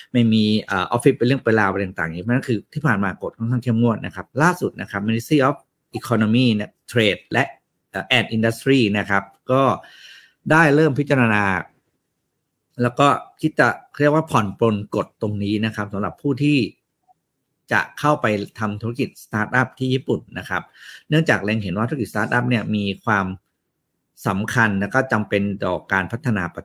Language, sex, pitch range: Thai, male, 100-130 Hz